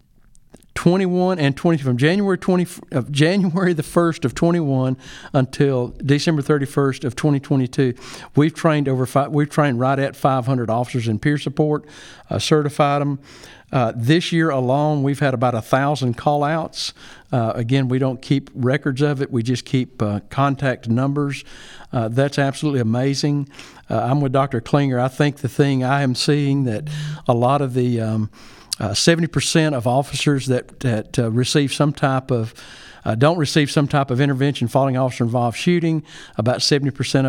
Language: English